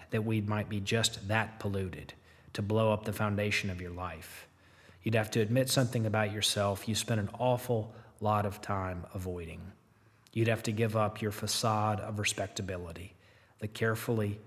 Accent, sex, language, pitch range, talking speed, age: American, male, English, 100-125 Hz, 170 wpm, 30-49